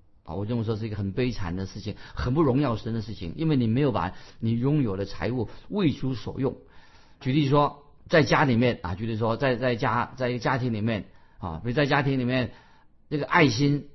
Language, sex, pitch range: Chinese, male, 110-145 Hz